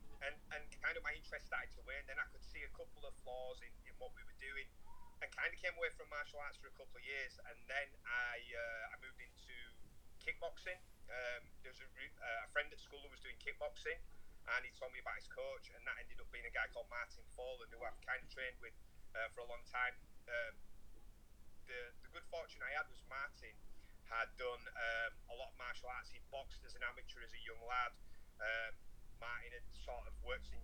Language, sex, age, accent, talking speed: English, male, 30-49, British, 235 wpm